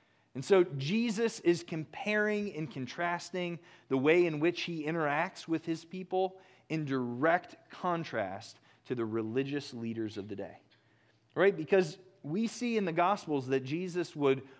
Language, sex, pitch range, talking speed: English, male, 125-170 Hz, 150 wpm